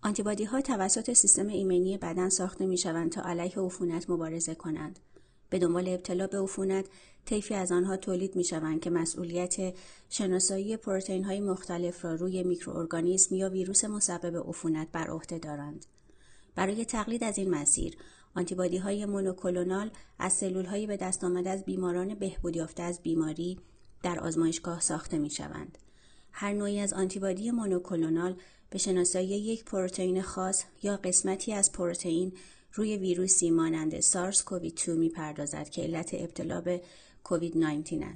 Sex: female